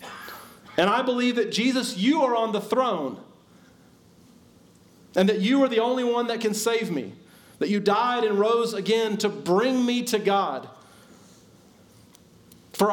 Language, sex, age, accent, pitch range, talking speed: English, male, 40-59, American, 175-225 Hz, 155 wpm